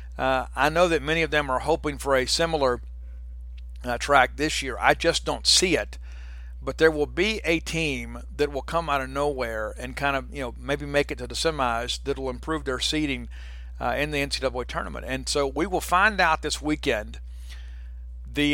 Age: 50-69